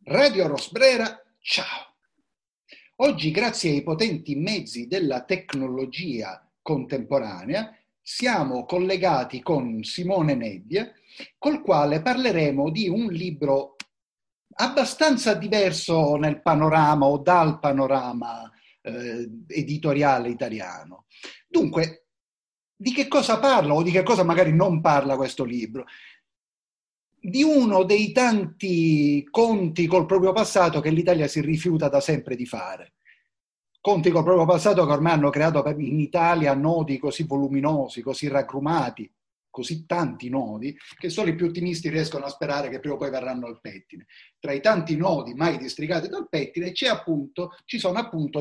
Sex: male